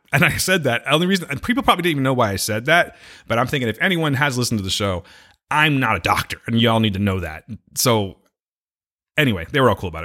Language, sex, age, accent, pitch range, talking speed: English, male, 30-49, American, 105-145 Hz, 265 wpm